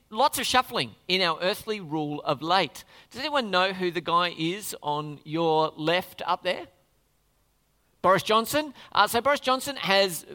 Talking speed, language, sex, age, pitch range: 160 wpm, English, male, 40-59, 155-200 Hz